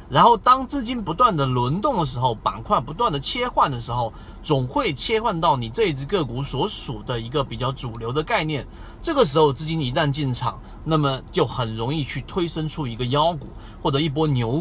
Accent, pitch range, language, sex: native, 120-170 Hz, Chinese, male